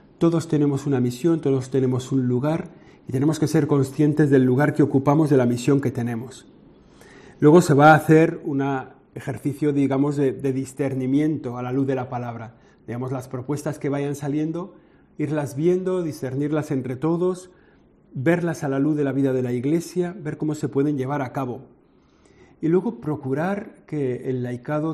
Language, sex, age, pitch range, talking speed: Spanish, male, 40-59, 130-155 Hz, 175 wpm